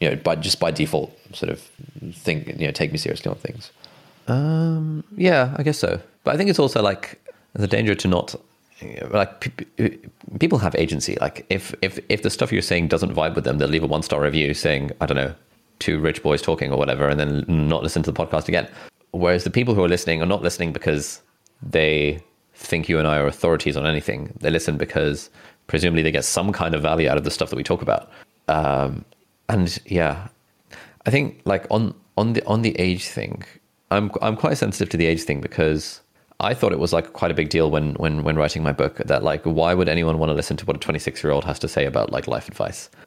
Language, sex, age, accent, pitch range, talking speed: English, male, 20-39, British, 80-100 Hz, 230 wpm